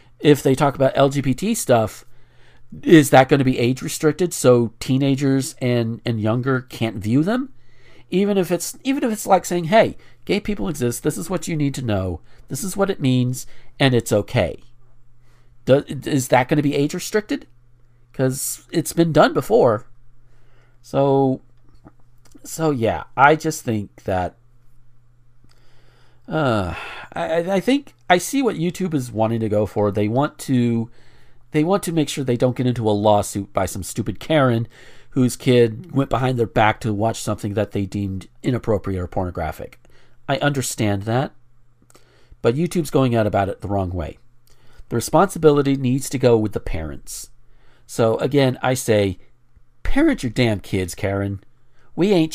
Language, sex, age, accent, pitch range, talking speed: English, male, 50-69, American, 115-145 Hz, 165 wpm